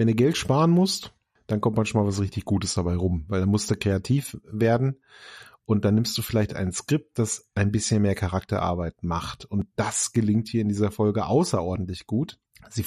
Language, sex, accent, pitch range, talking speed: German, male, German, 105-130 Hz, 195 wpm